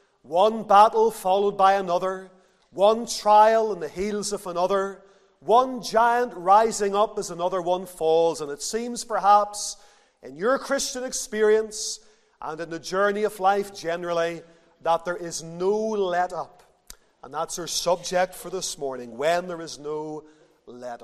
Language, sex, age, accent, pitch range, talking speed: English, male, 40-59, Irish, 170-215 Hz, 150 wpm